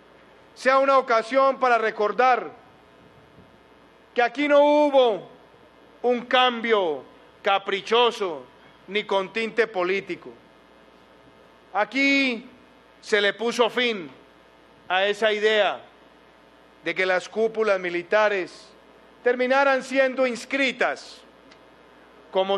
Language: Spanish